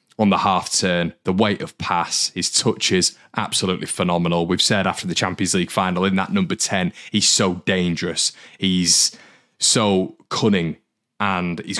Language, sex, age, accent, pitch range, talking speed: English, male, 20-39, British, 85-95 Hz, 160 wpm